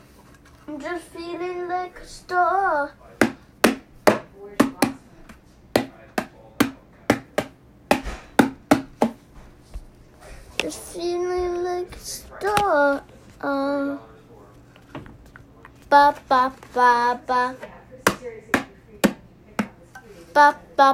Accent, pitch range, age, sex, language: American, 225-320 Hz, 10-29, female, English